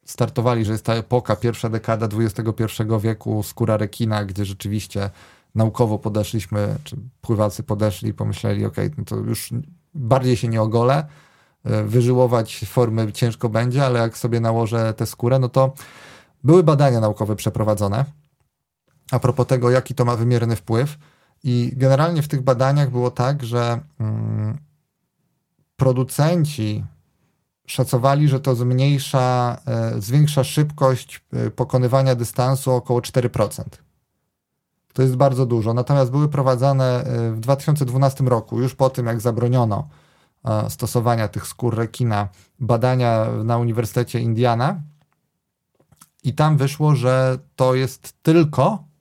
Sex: male